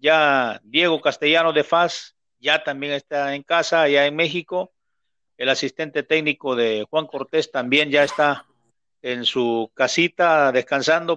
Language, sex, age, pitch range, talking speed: Spanish, male, 50-69, 130-165 Hz, 140 wpm